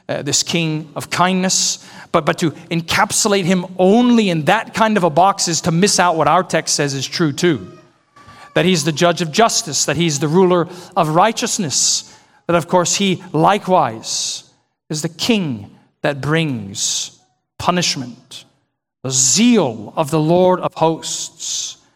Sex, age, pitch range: male, 40-59, 145-190 Hz